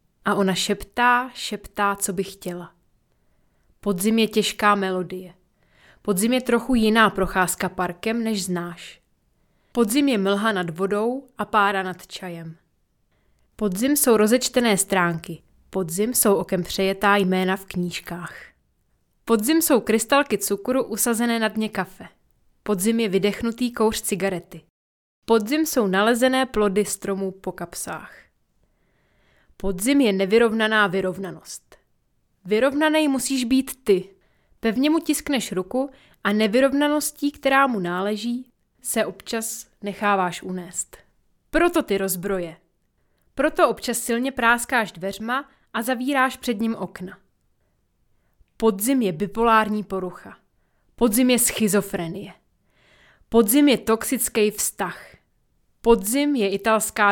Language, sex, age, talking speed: Czech, female, 20-39, 110 wpm